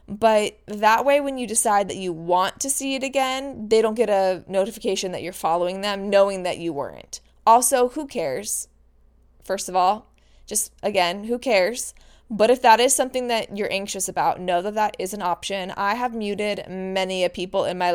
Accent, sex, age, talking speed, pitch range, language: American, female, 20-39, 195 wpm, 190-235 Hz, English